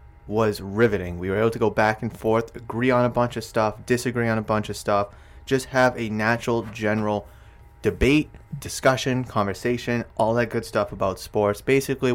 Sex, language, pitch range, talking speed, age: male, English, 100-120 Hz, 185 wpm, 20-39